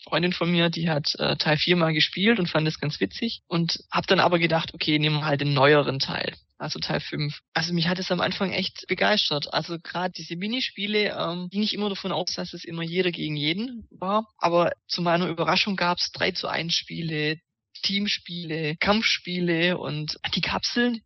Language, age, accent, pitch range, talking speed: German, 20-39, German, 165-195 Hz, 195 wpm